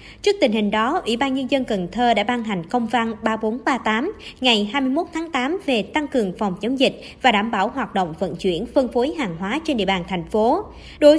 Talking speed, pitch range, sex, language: 230 wpm, 210-285 Hz, male, Vietnamese